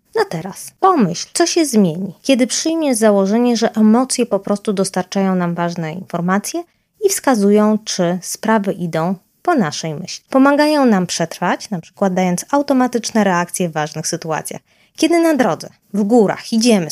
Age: 20-39